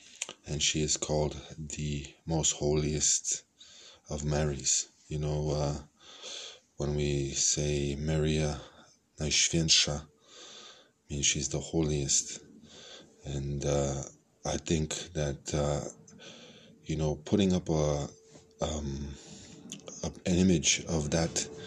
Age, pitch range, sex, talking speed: 20-39, 75-85 Hz, male, 105 wpm